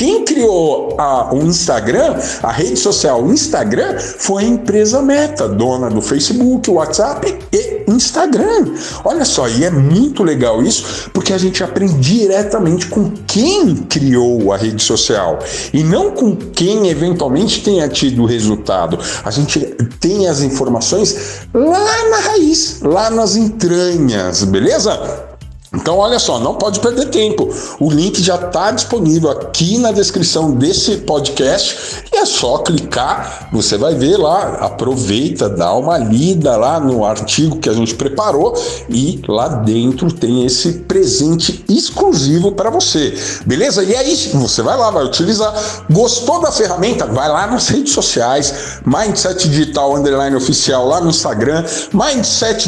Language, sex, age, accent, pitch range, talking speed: Portuguese, male, 60-79, Brazilian, 140-225 Hz, 145 wpm